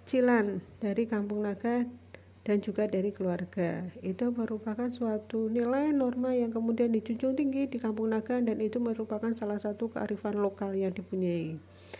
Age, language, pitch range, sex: 40-59, Indonesian, 205-250 Hz, female